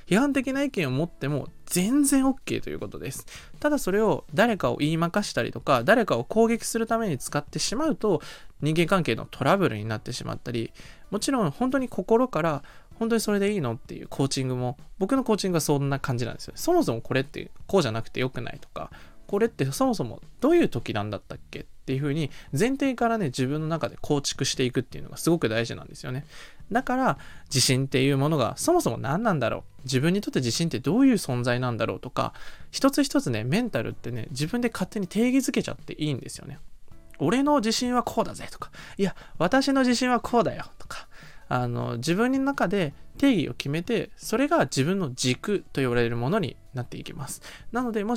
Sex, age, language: male, 20-39, Japanese